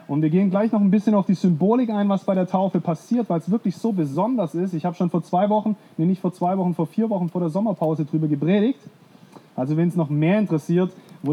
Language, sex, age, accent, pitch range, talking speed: German, male, 30-49, German, 165-215 Hz, 255 wpm